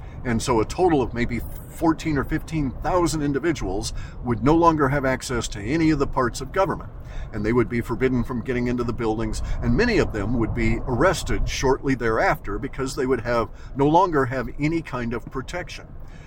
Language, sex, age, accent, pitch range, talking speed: English, male, 50-69, American, 110-135 Hz, 195 wpm